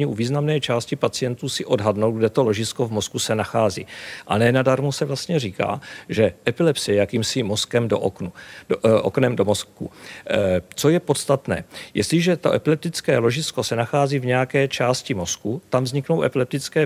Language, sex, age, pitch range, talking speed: Czech, male, 40-59, 110-150 Hz, 165 wpm